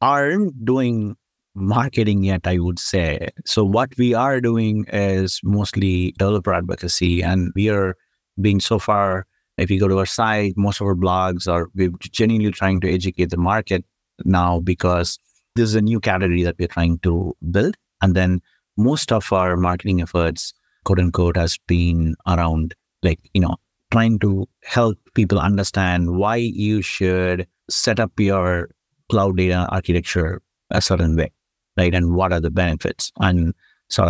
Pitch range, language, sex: 90-110 Hz, English, male